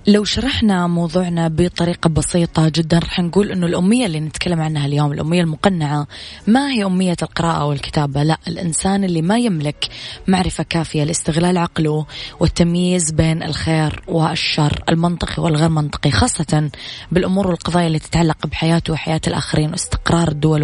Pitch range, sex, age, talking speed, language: 155-180 Hz, female, 20-39, 135 wpm, Arabic